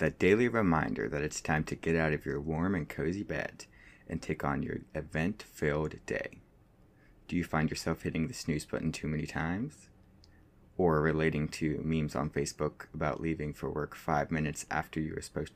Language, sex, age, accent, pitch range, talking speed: English, male, 30-49, American, 80-95 Hz, 185 wpm